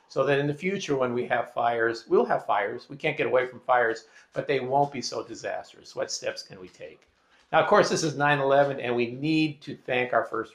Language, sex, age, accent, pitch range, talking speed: English, male, 50-69, American, 120-150 Hz, 240 wpm